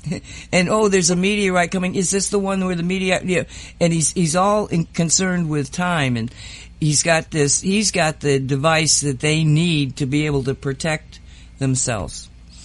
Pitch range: 130-165 Hz